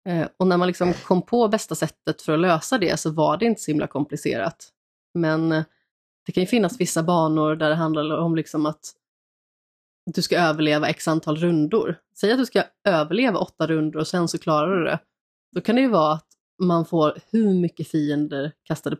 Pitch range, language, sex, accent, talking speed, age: 155-190 Hz, Swedish, female, native, 200 wpm, 20-39